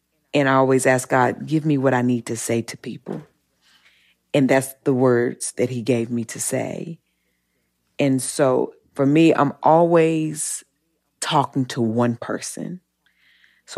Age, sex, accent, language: 40-59, female, American, English